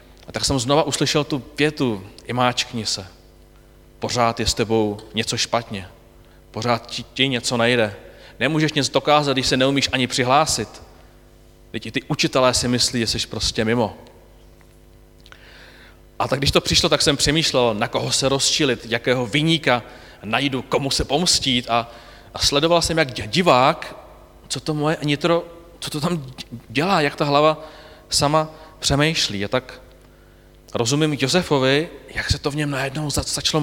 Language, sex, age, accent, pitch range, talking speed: Czech, male, 30-49, native, 105-145 Hz, 150 wpm